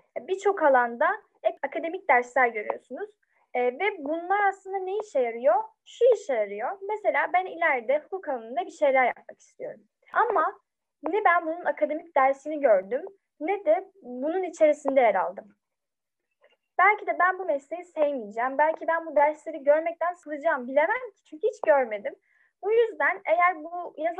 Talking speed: 145 wpm